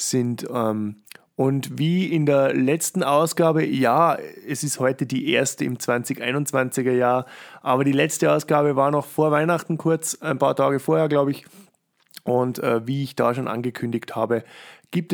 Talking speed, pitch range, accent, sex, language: 155 wpm, 120-150 Hz, German, male, German